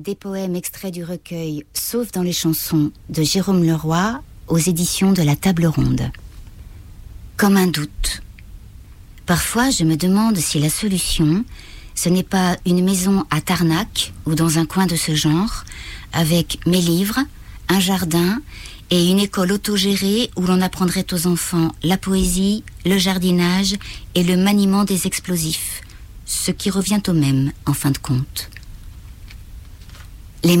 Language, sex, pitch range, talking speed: French, female, 125-180 Hz, 145 wpm